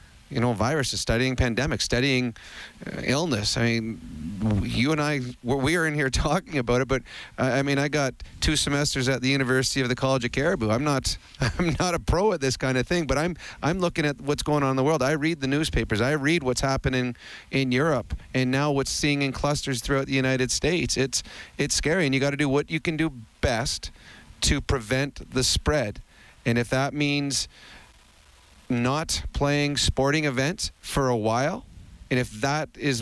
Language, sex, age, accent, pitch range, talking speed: English, male, 40-59, American, 120-145 Hz, 200 wpm